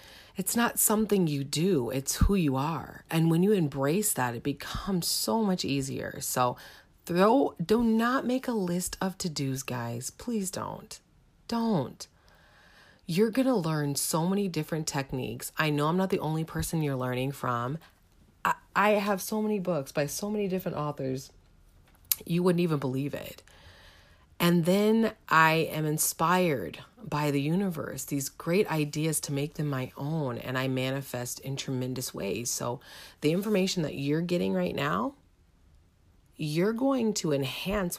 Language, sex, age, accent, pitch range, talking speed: English, female, 30-49, American, 135-185 Hz, 160 wpm